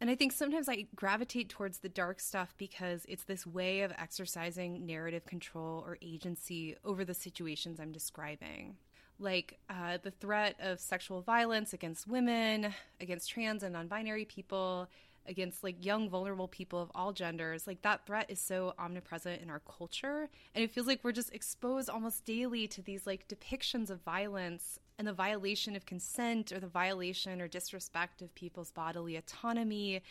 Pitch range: 180-215 Hz